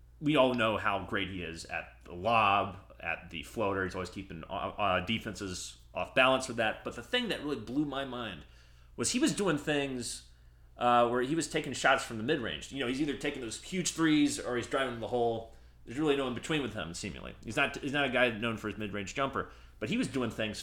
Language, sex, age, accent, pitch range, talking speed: English, male, 30-49, American, 80-130 Hz, 230 wpm